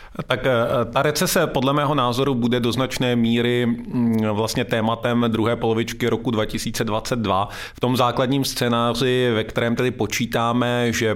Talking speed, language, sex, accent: 135 wpm, Czech, male, native